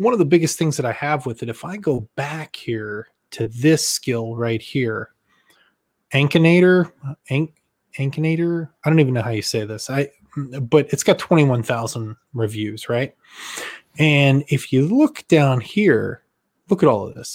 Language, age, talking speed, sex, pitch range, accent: English, 20-39, 170 wpm, male, 120-155 Hz, American